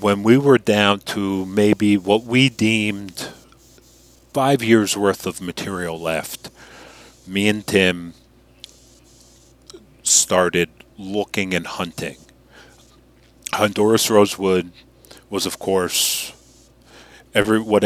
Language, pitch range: English, 90-105 Hz